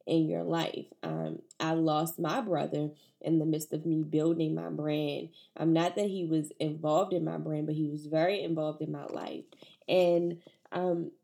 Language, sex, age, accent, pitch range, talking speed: English, female, 10-29, American, 155-185 Hz, 185 wpm